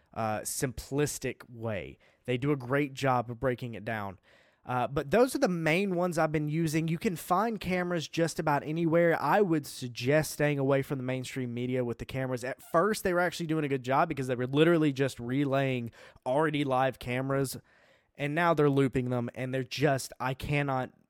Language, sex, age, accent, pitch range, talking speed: English, male, 20-39, American, 130-165 Hz, 195 wpm